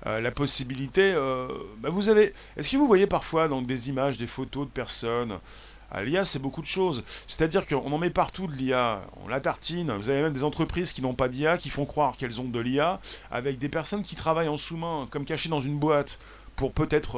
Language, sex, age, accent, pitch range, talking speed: French, male, 40-59, French, 120-160 Hz, 220 wpm